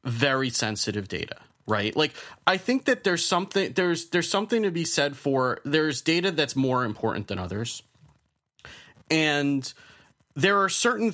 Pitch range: 120-160 Hz